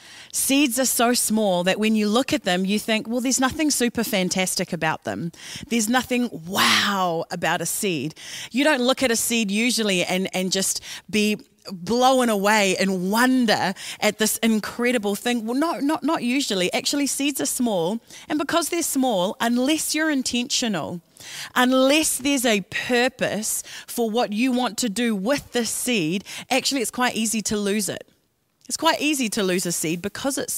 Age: 30-49